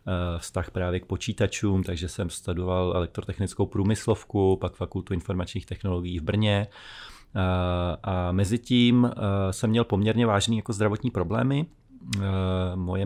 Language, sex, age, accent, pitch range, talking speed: Czech, male, 30-49, native, 95-110 Hz, 115 wpm